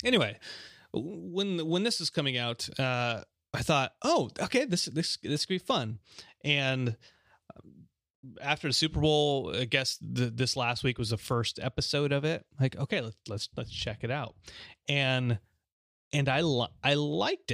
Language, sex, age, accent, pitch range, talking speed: English, male, 30-49, American, 115-140 Hz, 170 wpm